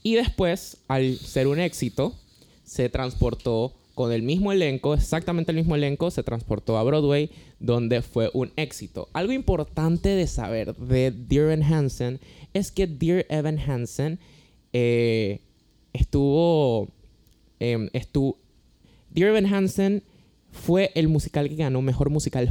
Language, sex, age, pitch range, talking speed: Spanish, male, 20-39, 125-175 Hz, 135 wpm